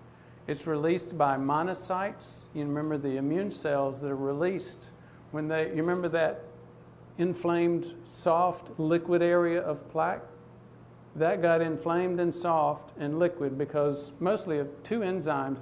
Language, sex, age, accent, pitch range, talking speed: English, male, 50-69, American, 140-175 Hz, 135 wpm